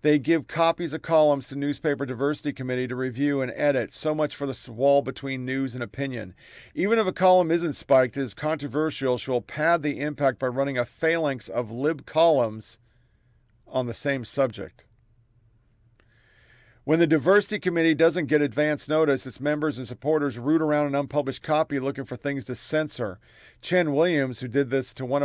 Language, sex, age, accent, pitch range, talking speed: English, male, 40-59, American, 130-155 Hz, 180 wpm